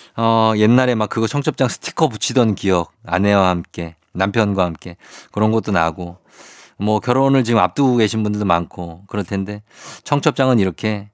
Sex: male